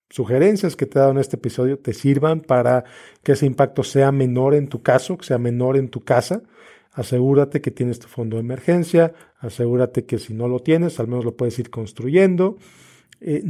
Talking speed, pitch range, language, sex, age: 200 wpm, 125-160 Hz, Spanish, male, 40-59